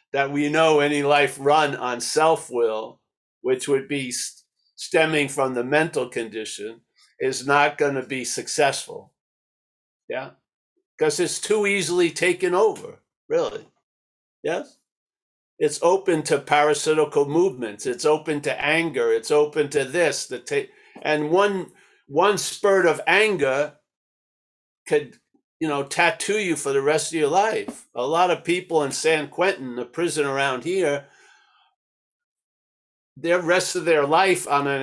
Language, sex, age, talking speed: English, male, 60-79, 140 wpm